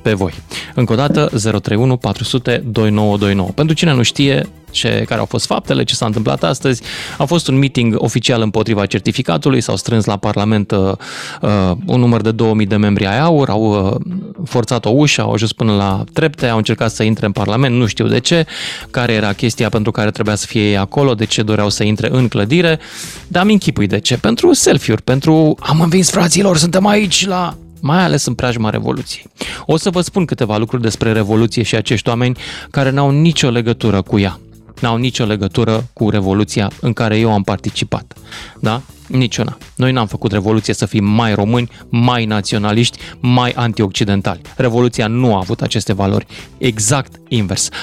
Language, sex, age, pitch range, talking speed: Romanian, male, 20-39, 105-130 Hz, 180 wpm